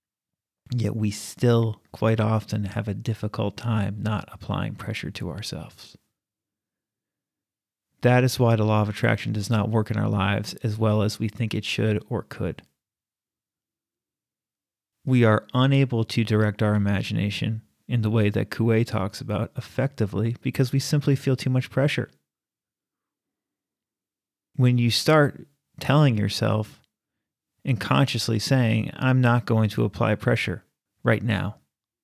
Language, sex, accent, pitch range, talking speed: English, male, American, 105-130 Hz, 140 wpm